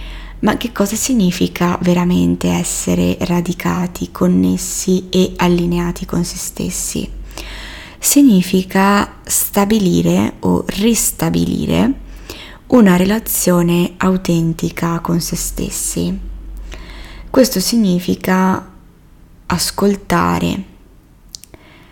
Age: 20-39